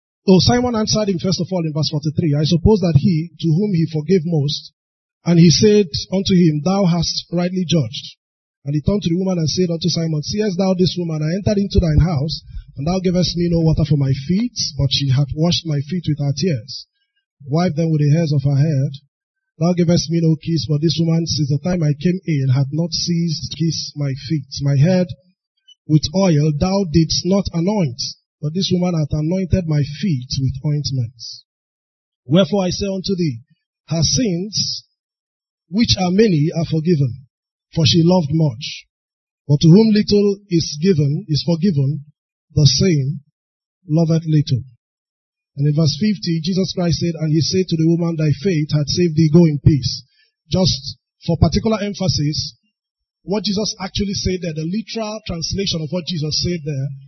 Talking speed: 185 wpm